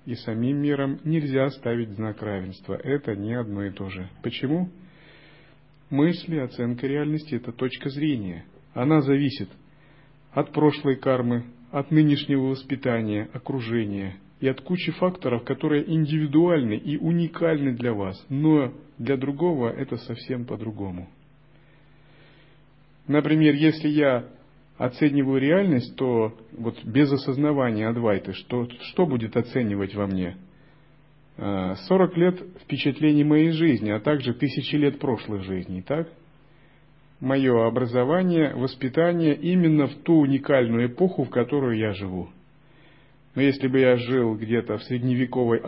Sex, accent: male, native